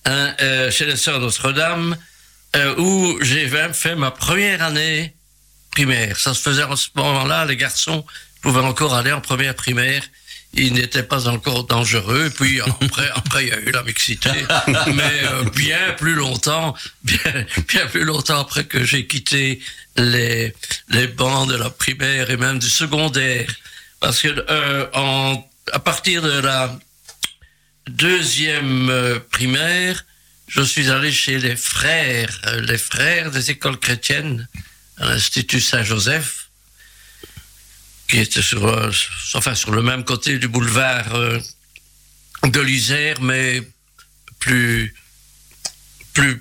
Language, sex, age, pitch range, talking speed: French, male, 60-79, 125-145 Hz, 135 wpm